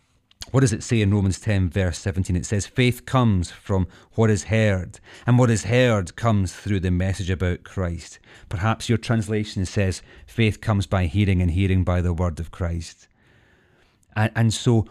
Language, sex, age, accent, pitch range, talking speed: English, male, 30-49, British, 95-120 Hz, 175 wpm